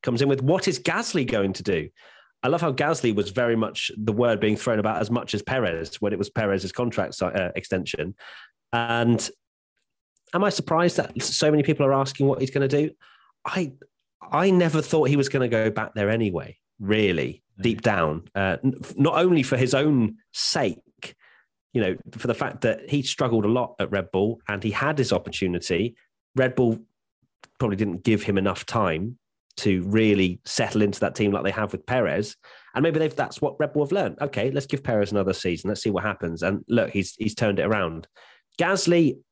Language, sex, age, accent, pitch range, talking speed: English, male, 30-49, British, 100-135 Hz, 200 wpm